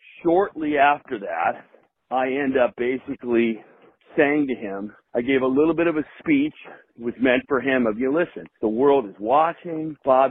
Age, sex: 50-69, male